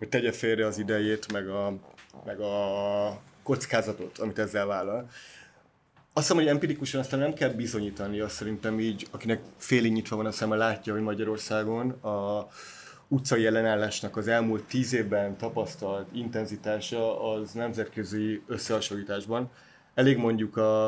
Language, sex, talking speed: Hungarian, male, 135 wpm